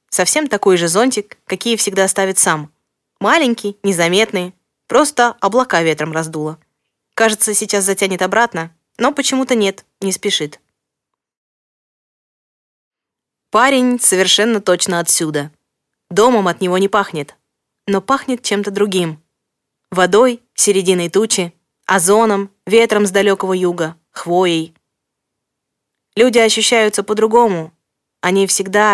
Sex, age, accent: female, 20-39, native